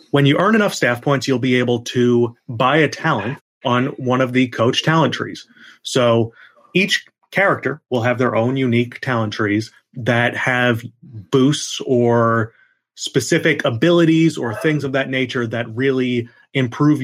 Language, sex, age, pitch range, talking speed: English, male, 30-49, 115-140 Hz, 155 wpm